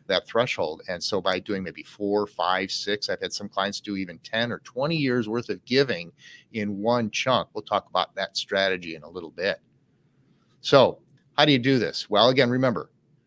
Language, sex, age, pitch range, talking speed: English, male, 40-59, 100-140 Hz, 200 wpm